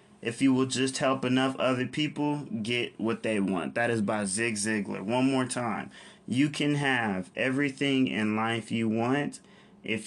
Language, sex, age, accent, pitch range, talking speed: English, male, 20-39, American, 110-135 Hz, 175 wpm